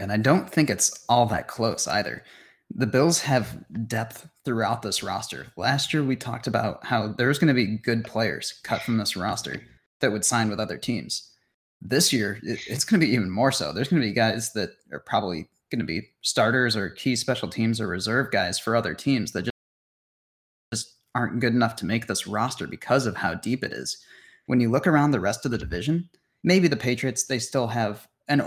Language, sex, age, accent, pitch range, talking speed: English, male, 20-39, American, 105-130 Hz, 210 wpm